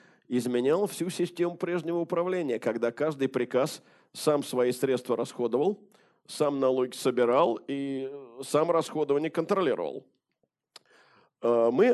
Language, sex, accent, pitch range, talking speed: Russian, male, native, 130-175 Hz, 100 wpm